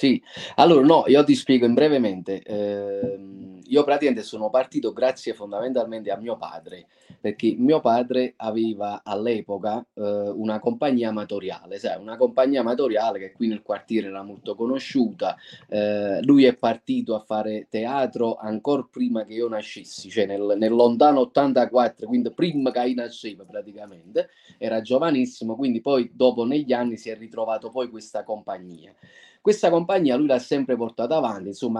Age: 30-49